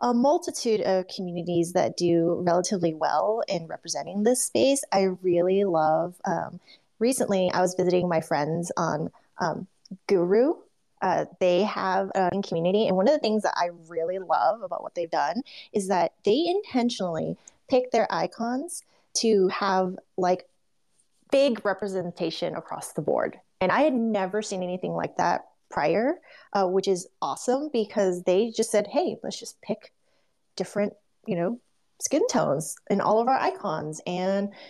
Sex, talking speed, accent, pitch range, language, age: female, 155 wpm, American, 175-220 Hz, English, 20-39